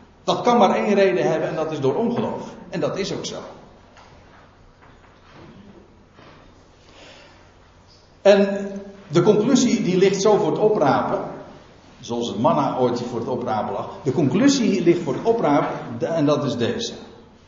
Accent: Dutch